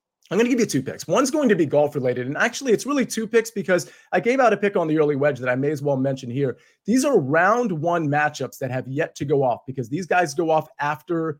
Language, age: English, 30-49